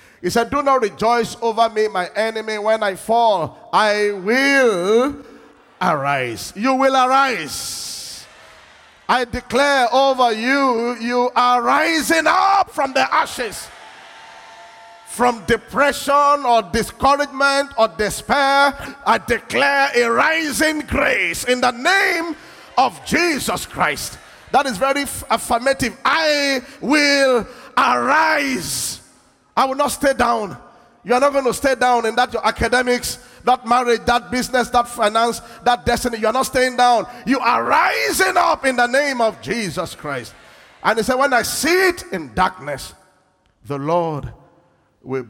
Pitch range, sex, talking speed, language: 210-275 Hz, male, 140 wpm, English